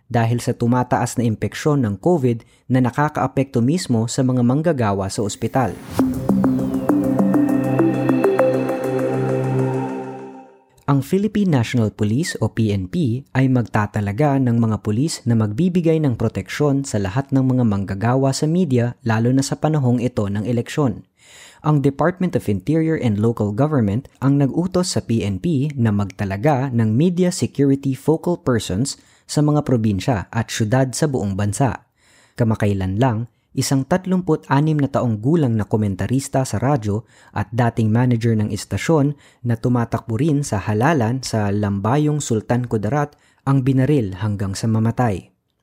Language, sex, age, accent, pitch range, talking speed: Filipino, female, 20-39, native, 110-140 Hz, 130 wpm